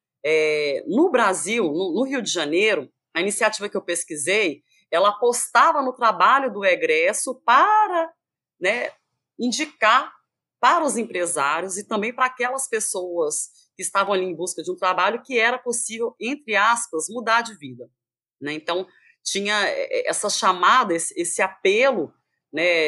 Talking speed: 145 wpm